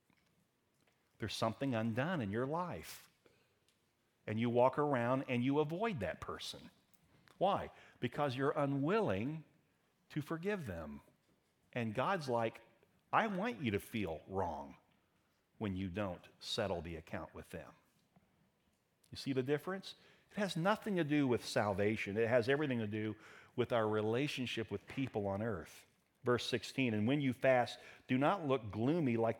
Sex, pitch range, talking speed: male, 115-150 Hz, 150 wpm